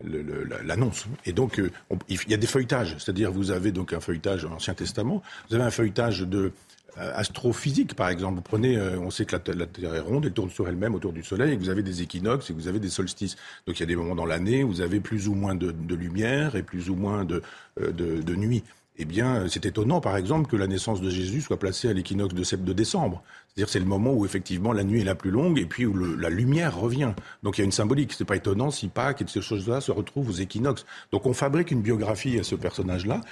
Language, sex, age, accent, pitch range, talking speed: French, male, 50-69, French, 90-120 Hz, 275 wpm